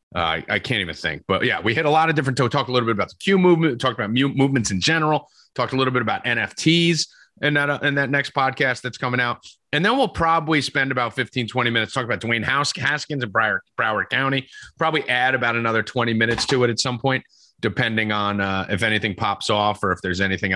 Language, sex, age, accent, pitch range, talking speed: English, male, 30-49, American, 110-160 Hz, 240 wpm